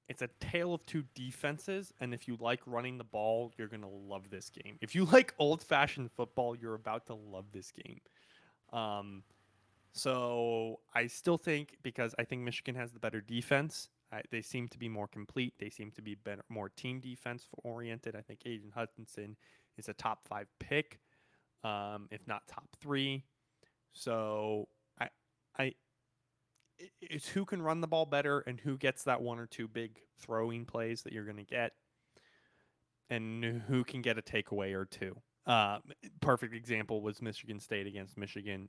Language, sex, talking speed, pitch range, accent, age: English, male, 170 wpm, 105-125 Hz, American, 20-39